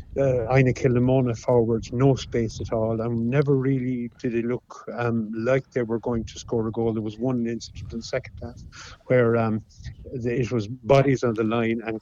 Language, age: English, 60-79